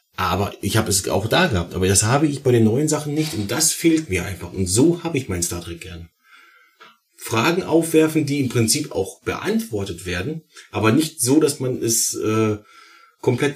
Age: 30-49